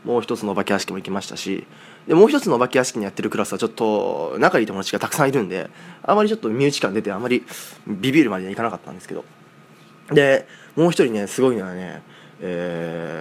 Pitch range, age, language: 105-165 Hz, 20-39, Japanese